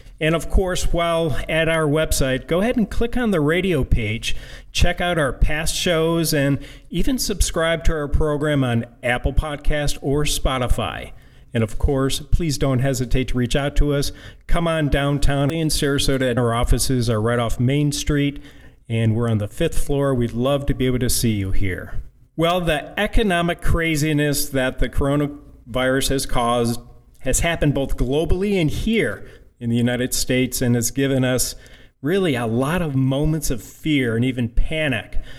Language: English